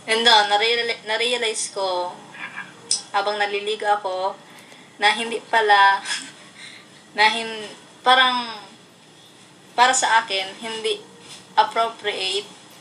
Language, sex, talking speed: English, female, 90 wpm